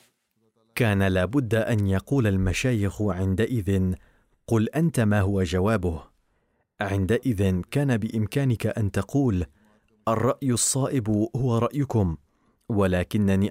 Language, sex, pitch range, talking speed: Arabic, male, 100-120 Hz, 95 wpm